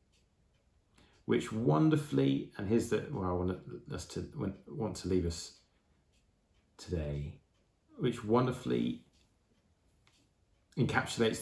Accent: British